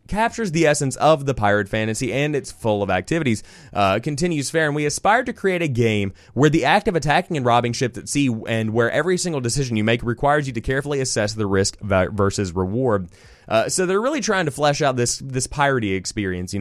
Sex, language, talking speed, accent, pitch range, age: male, English, 220 wpm, American, 100-140 Hz, 20-39